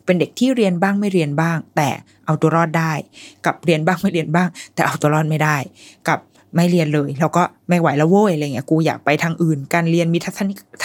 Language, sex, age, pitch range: Thai, female, 20-39, 150-200 Hz